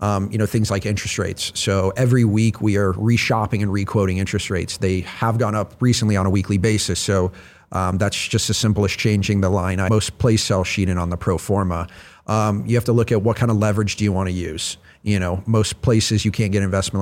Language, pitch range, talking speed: English, 95-115 Hz, 245 wpm